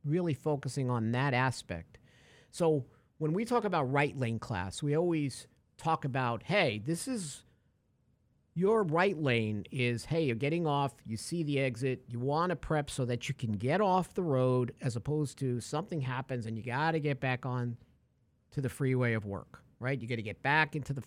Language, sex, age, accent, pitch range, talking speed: English, male, 50-69, American, 115-150 Hz, 190 wpm